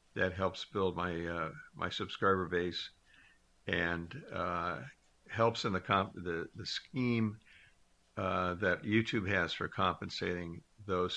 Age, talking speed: 60-79, 130 wpm